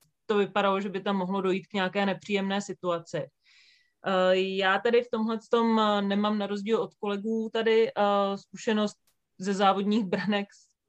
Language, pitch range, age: Czech, 180-210 Hz, 30-49